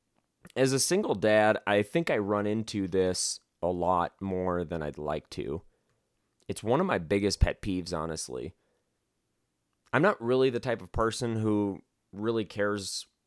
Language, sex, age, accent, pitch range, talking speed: English, male, 30-49, American, 90-115 Hz, 160 wpm